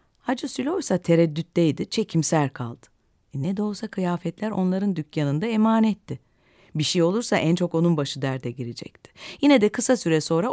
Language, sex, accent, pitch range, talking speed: Turkish, female, native, 150-215 Hz, 155 wpm